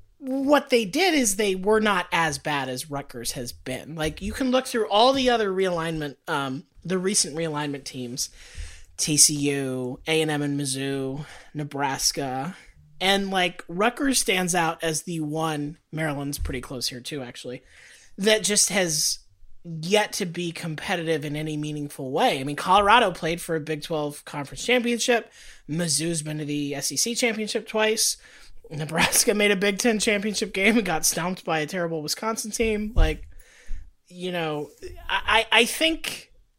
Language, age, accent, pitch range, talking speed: English, 30-49, American, 150-225 Hz, 160 wpm